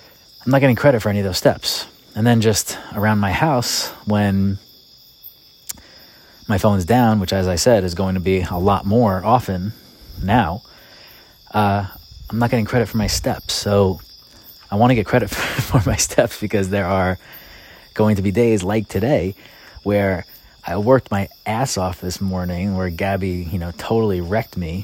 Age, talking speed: 30-49, 175 wpm